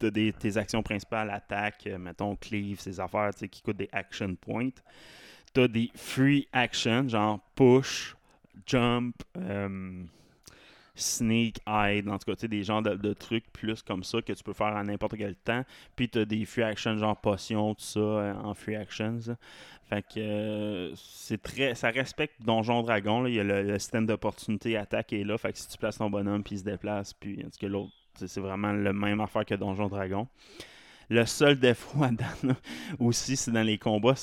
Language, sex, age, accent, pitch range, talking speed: French, male, 20-39, Canadian, 100-115 Hz, 195 wpm